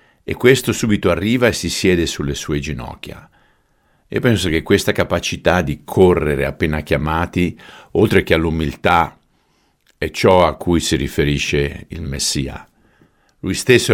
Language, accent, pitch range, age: Italian, native, 75-90 Hz, 50-69